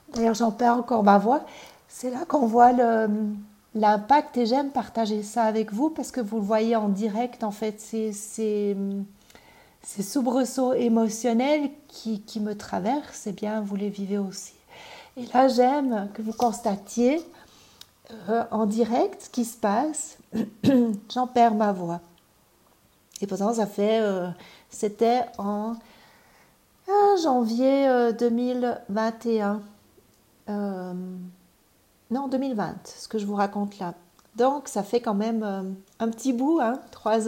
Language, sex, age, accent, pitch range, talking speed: French, female, 60-79, French, 210-255 Hz, 145 wpm